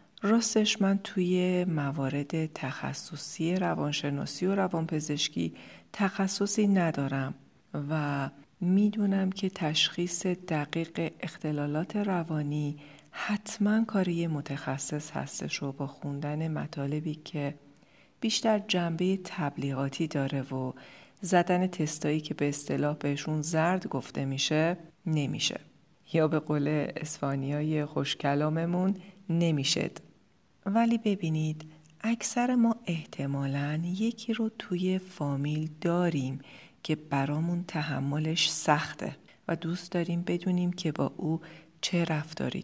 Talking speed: 100 wpm